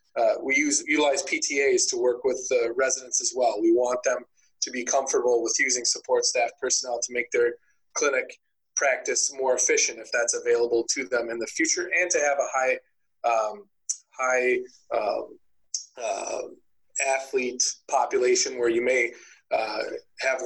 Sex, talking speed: male, 160 wpm